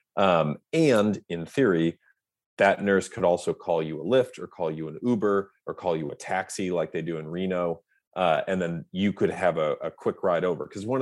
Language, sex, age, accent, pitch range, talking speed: English, male, 30-49, American, 80-95 Hz, 220 wpm